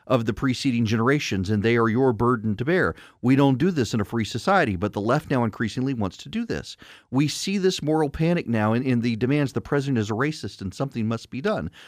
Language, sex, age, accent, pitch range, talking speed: English, male, 40-59, American, 115-175 Hz, 240 wpm